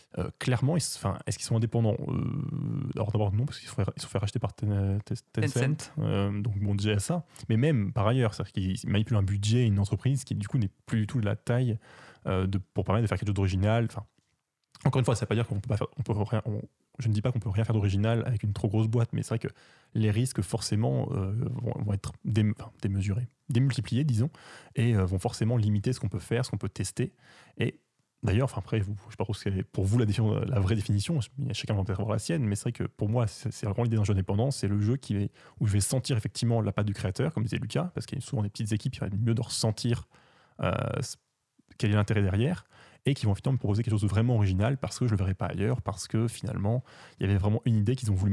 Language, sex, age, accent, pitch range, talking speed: French, male, 20-39, French, 105-125 Hz, 270 wpm